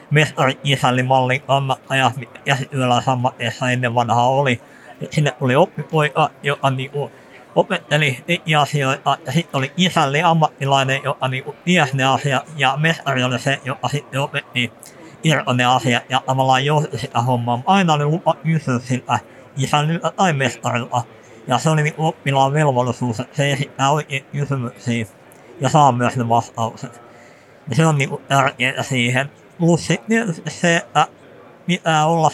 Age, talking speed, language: 50-69, 135 wpm, Finnish